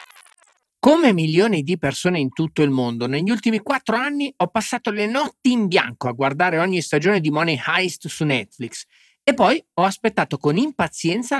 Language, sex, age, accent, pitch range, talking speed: Italian, male, 40-59, native, 145-205 Hz, 175 wpm